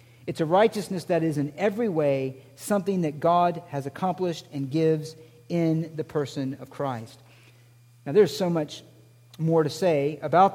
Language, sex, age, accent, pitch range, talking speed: English, male, 50-69, American, 125-180 Hz, 160 wpm